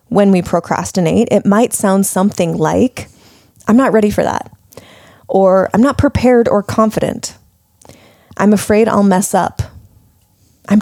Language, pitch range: English, 180-220 Hz